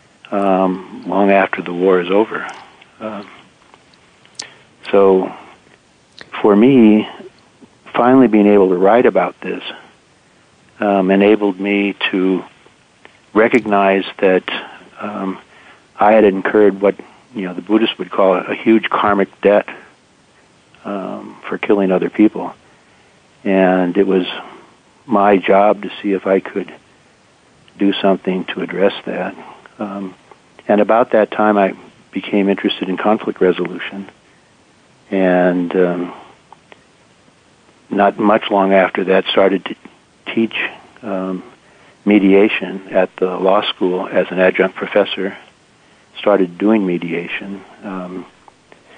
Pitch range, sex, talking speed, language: 95-105 Hz, male, 115 wpm, English